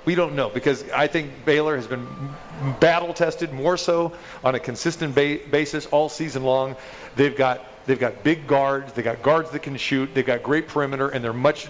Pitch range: 130-150 Hz